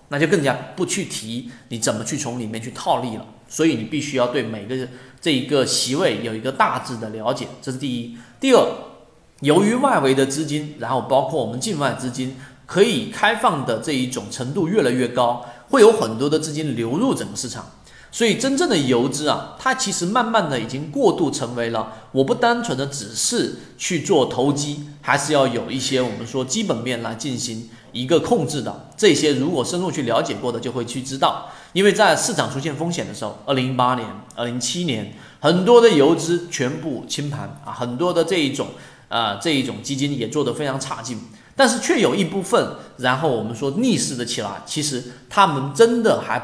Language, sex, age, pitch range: Chinese, male, 30-49, 125-160 Hz